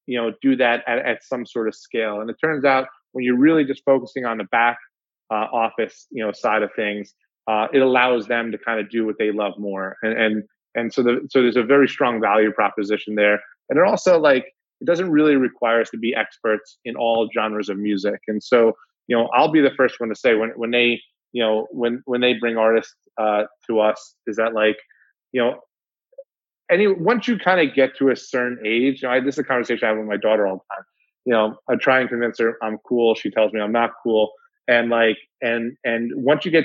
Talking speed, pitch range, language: 240 wpm, 110-135 Hz, English